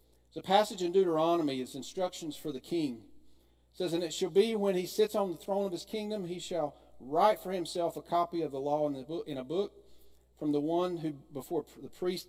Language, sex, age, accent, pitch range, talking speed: English, male, 40-59, American, 130-180 Hz, 220 wpm